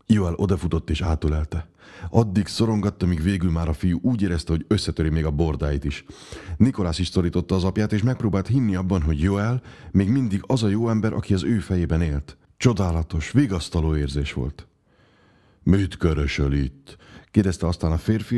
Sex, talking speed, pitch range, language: male, 170 wpm, 80-105 Hz, Hungarian